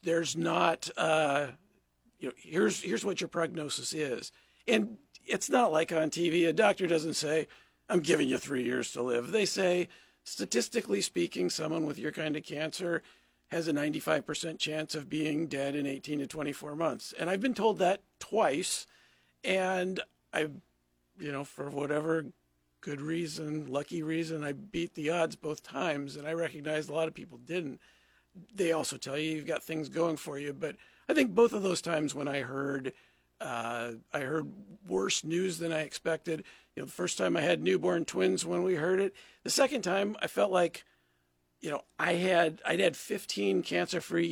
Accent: American